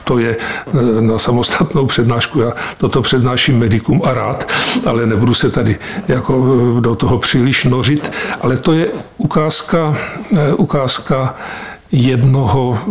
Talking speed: 120 wpm